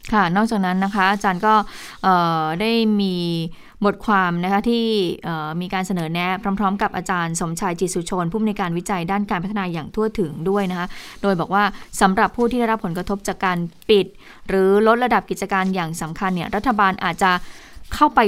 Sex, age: female, 20-39